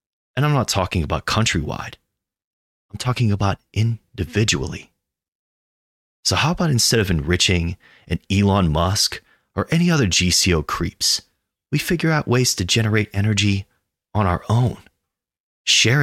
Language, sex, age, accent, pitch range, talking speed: English, male, 30-49, American, 85-110 Hz, 130 wpm